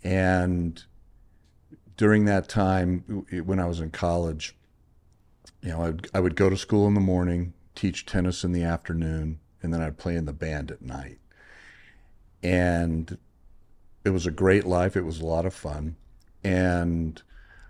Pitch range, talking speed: 80-95 Hz, 155 wpm